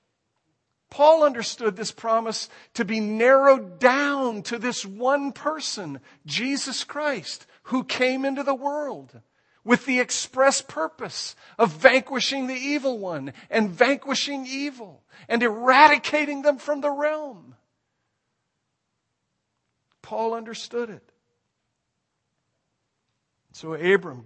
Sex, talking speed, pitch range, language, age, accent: male, 105 wpm, 190-265 Hz, English, 50-69, American